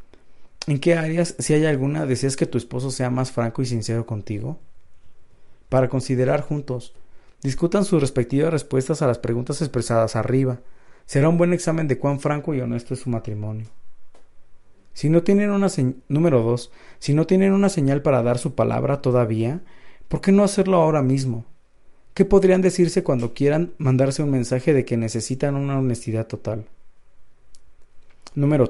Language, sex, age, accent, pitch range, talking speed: Spanish, male, 40-59, Mexican, 120-150 Hz, 165 wpm